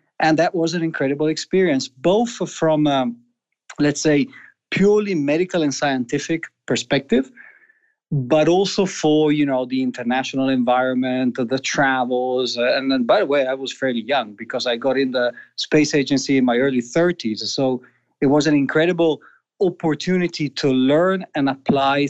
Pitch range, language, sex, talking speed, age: 135-180 Hz, English, male, 150 wpm, 30-49